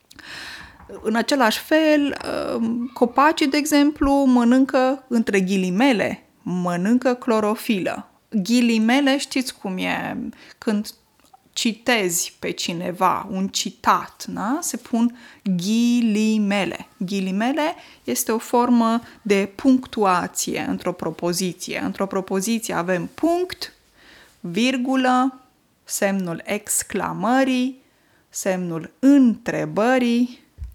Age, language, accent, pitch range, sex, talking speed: 20-39, Romanian, native, 190-255 Hz, female, 80 wpm